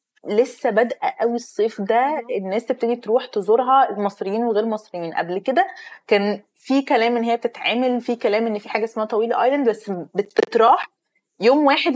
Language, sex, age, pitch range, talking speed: Arabic, female, 20-39, 205-260 Hz, 160 wpm